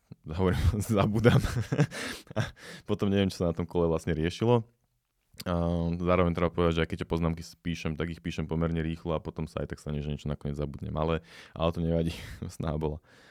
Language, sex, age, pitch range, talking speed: Slovak, male, 20-39, 80-90 Hz, 180 wpm